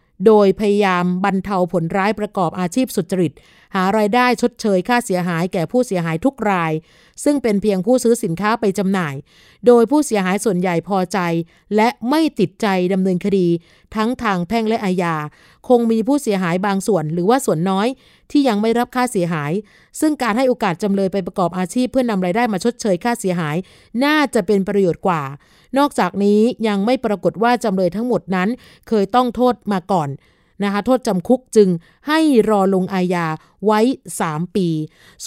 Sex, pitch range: female, 180-230 Hz